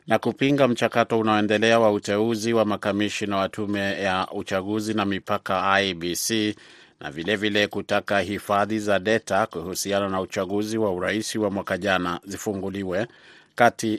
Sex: male